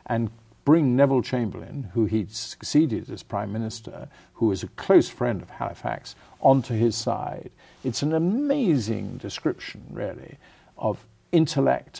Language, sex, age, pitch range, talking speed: English, male, 50-69, 100-135 Hz, 140 wpm